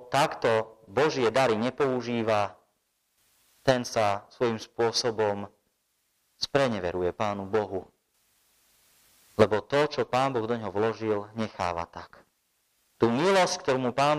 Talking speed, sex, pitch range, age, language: 110 wpm, male, 105-125 Hz, 30-49, Slovak